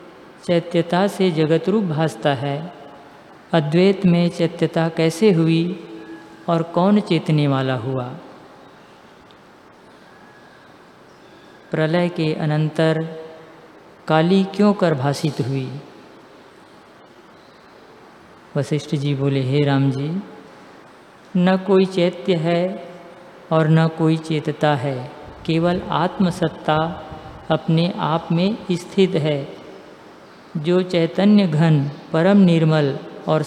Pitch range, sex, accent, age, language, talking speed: 145-175 Hz, female, native, 50-69, Hindi, 90 wpm